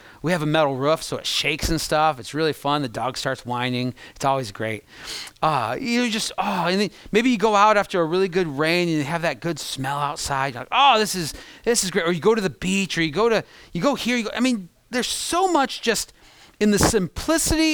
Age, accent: 30-49, American